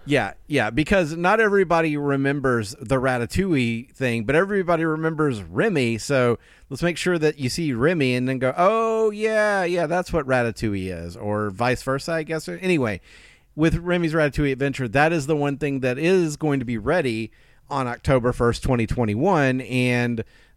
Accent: American